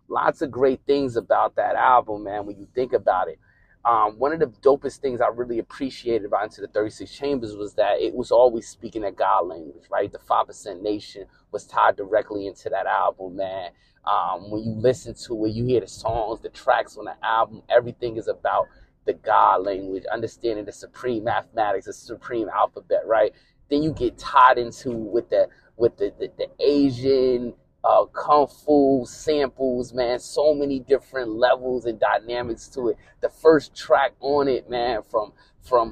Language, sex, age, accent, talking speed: English, male, 30-49, American, 185 wpm